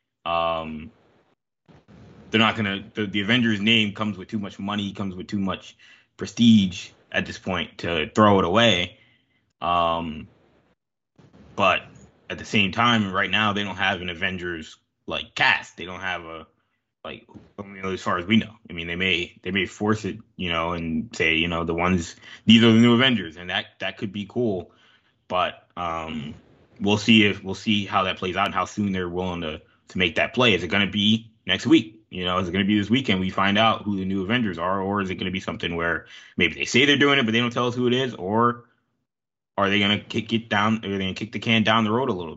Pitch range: 90-115 Hz